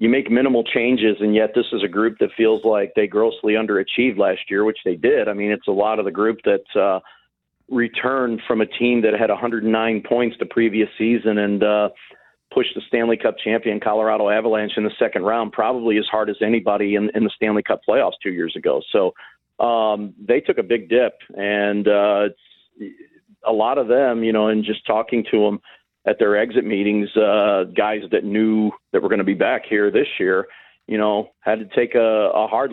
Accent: American